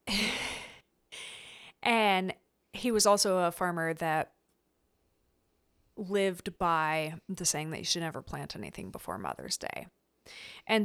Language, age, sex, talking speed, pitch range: English, 30-49, female, 115 wpm, 165-200 Hz